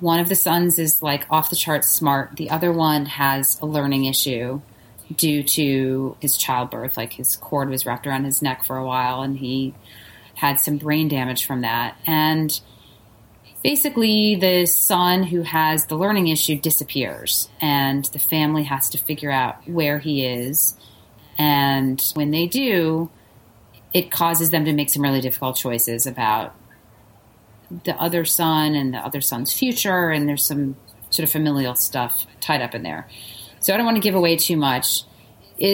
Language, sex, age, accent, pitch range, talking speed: English, female, 30-49, American, 125-160 Hz, 175 wpm